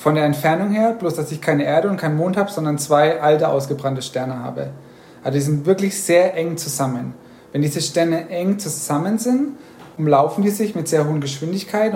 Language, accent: German, German